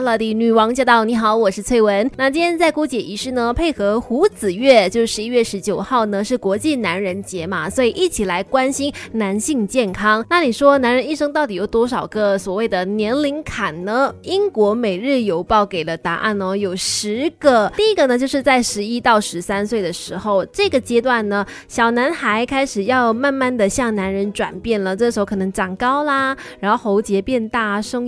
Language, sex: Chinese, female